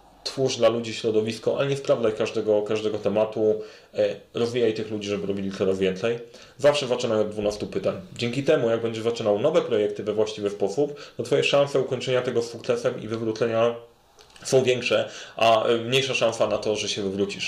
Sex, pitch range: male, 105-125 Hz